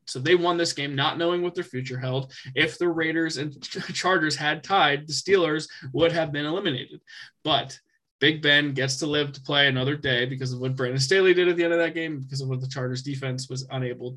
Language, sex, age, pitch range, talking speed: English, male, 20-39, 130-155 Hz, 230 wpm